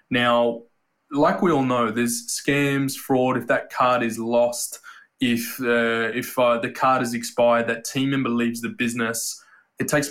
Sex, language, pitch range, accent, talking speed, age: male, English, 115-135 Hz, Australian, 170 wpm, 20-39